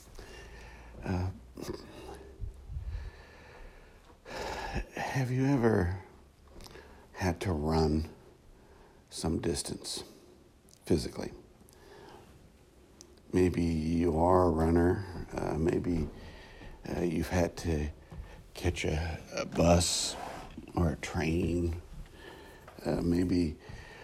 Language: English